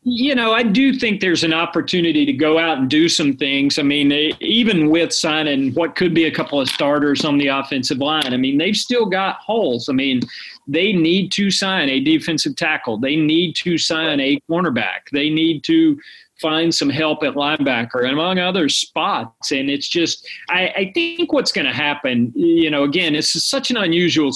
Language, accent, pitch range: English, American, 140-190 Hz